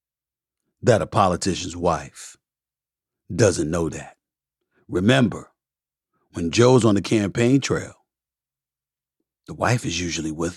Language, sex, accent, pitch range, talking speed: English, male, American, 95-125 Hz, 110 wpm